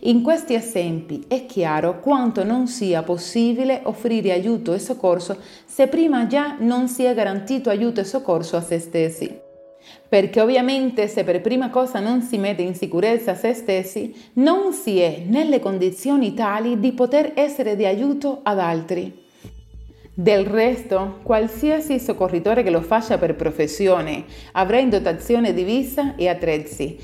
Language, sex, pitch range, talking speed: Italian, female, 175-250 Hz, 150 wpm